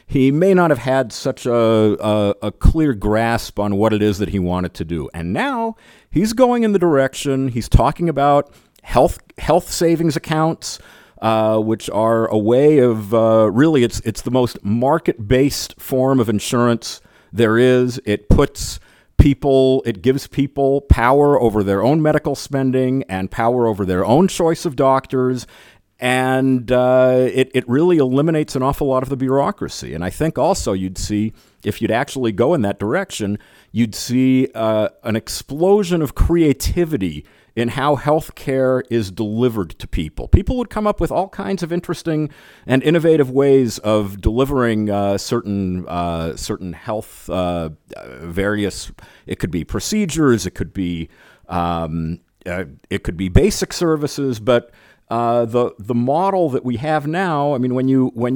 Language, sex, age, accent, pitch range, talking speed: English, male, 40-59, American, 105-140 Hz, 165 wpm